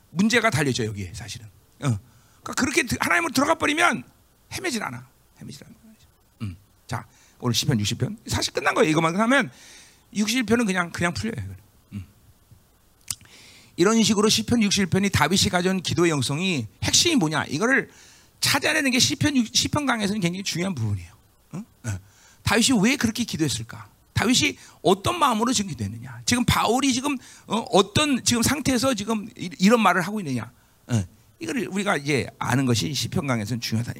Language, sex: Korean, male